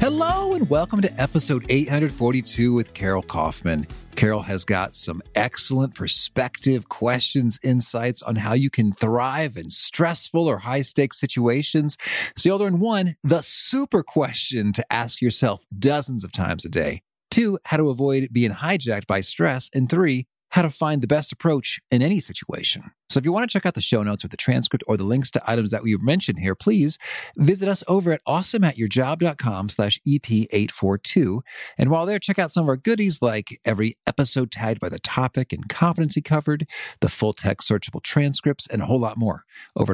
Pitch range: 110-160 Hz